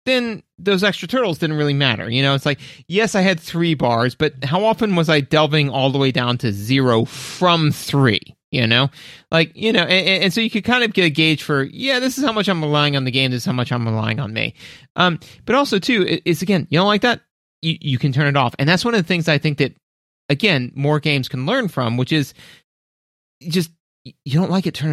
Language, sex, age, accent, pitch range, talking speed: English, male, 30-49, American, 125-180 Hz, 250 wpm